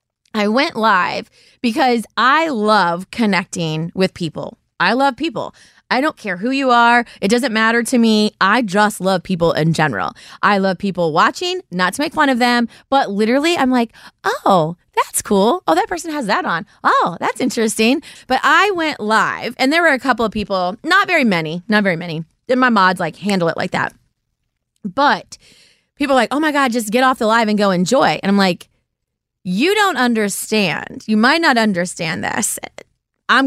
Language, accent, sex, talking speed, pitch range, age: English, American, female, 190 wpm, 195-260 Hz, 20-39